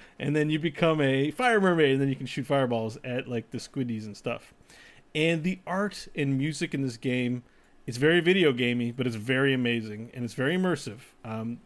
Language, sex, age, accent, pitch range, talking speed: English, male, 30-49, American, 120-160 Hz, 205 wpm